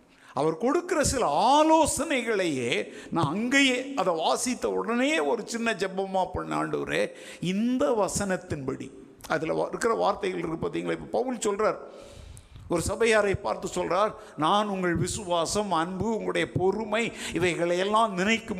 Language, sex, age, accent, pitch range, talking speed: Tamil, male, 50-69, native, 190-270 Hz, 115 wpm